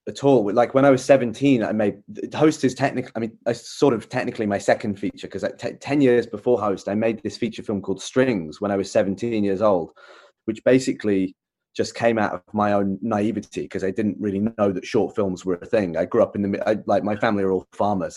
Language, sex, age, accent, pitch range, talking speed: English, male, 20-39, British, 95-115 Hz, 240 wpm